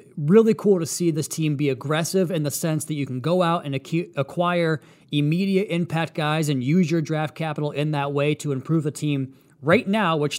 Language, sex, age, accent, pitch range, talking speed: English, male, 30-49, American, 140-170 Hz, 210 wpm